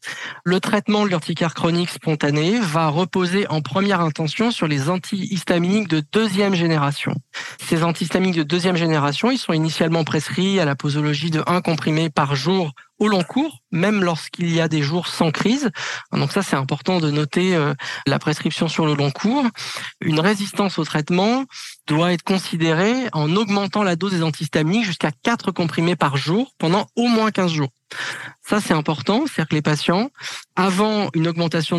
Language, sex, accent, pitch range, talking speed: French, male, French, 155-195 Hz, 170 wpm